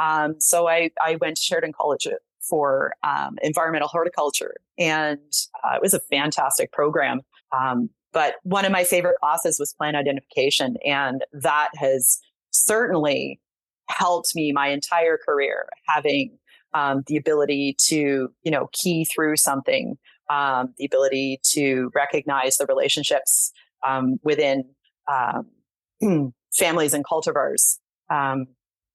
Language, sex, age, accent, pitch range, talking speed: English, female, 30-49, American, 150-210 Hz, 130 wpm